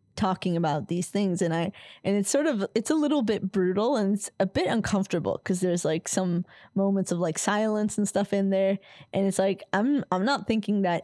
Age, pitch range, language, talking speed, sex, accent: 10-29, 170-205 Hz, Danish, 215 wpm, female, American